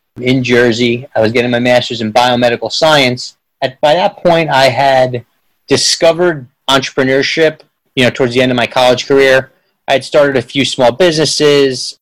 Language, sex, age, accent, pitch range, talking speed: English, male, 30-49, American, 115-135 Hz, 170 wpm